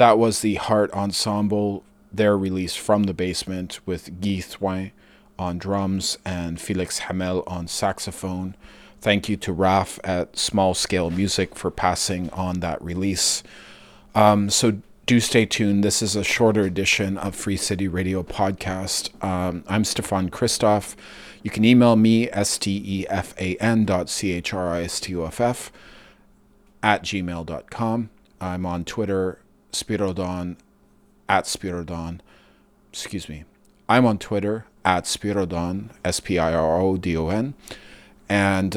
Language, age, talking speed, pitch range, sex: English, 30-49, 115 wpm, 90-105 Hz, male